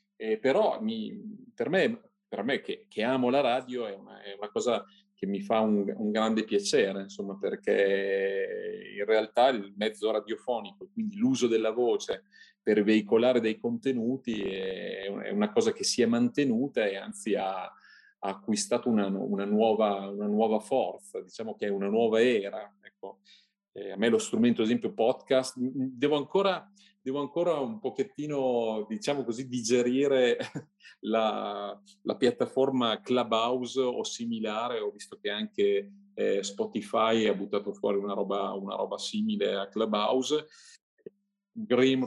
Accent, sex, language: native, male, Italian